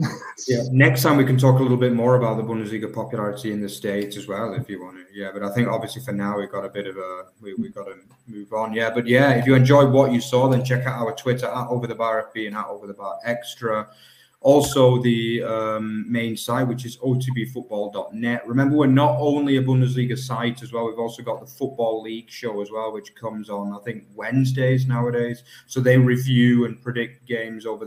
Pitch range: 110-125 Hz